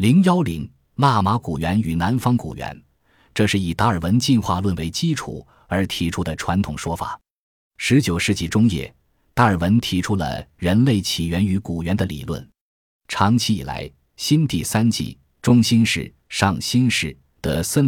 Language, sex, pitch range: Chinese, male, 85-115 Hz